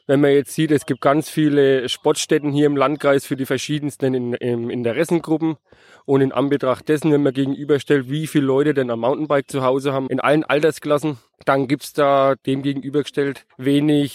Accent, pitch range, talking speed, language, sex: German, 130-150 Hz, 180 wpm, German, male